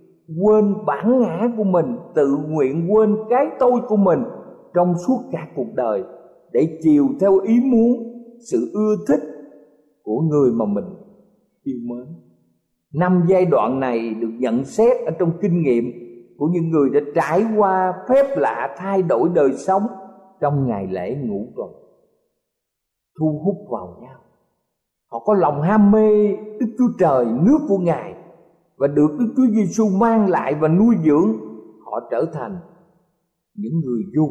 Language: Vietnamese